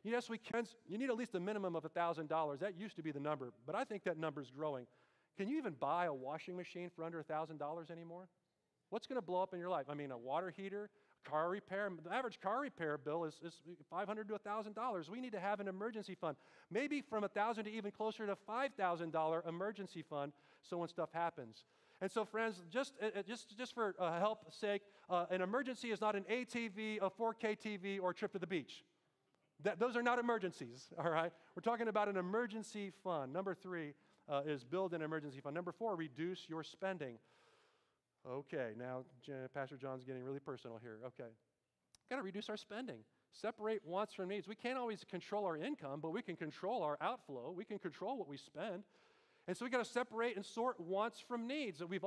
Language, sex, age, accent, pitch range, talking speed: Dutch, male, 40-59, American, 160-215 Hz, 210 wpm